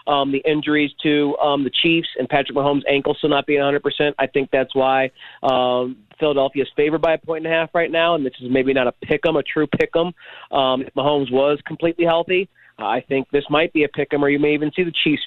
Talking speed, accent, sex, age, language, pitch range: 250 wpm, American, male, 30-49, English, 140-160 Hz